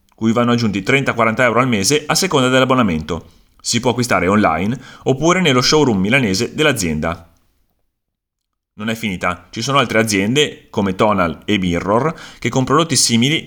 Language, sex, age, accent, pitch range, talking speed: Italian, male, 30-49, native, 95-140 Hz, 150 wpm